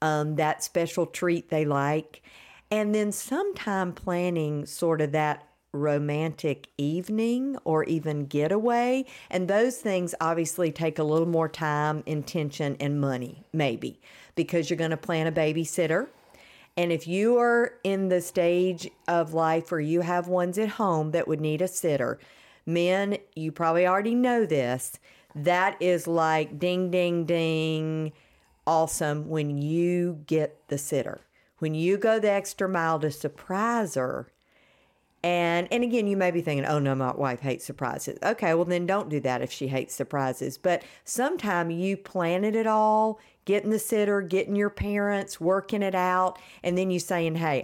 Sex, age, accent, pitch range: female, 50-69, American, 155-185 Hz